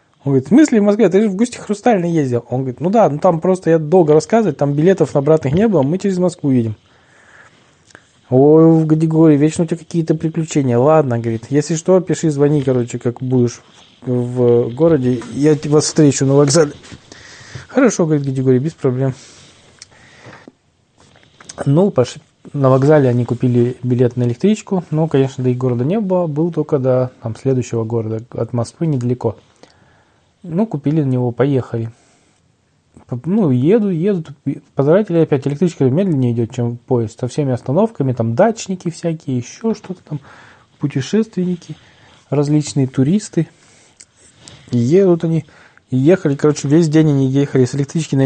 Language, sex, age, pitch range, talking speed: Russian, male, 20-39, 125-165 Hz, 155 wpm